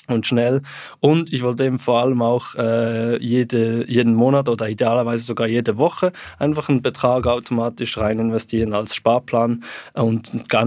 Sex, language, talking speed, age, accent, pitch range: male, German, 150 wpm, 20-39, German, 110-125 Hz